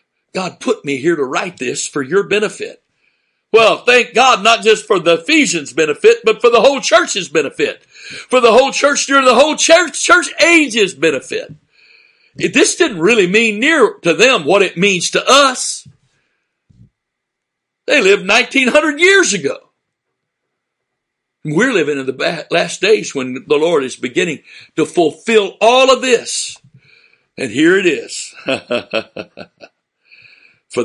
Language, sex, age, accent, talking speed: English, male, 60-79, American, 150 wpm